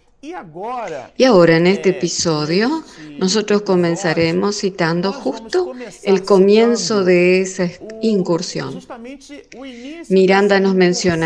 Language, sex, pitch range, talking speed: Spanish, female, 165-220 Hz, 90 wpm